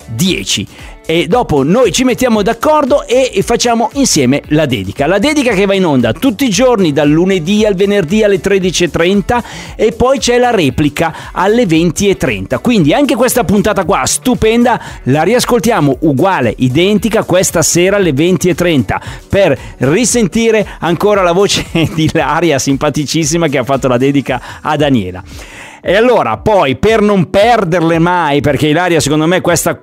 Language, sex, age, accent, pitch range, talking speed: Italian, male, 40-59, native, 155-240 Hz, 150 wpm